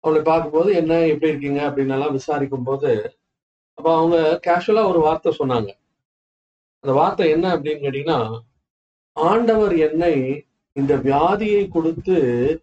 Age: 50-69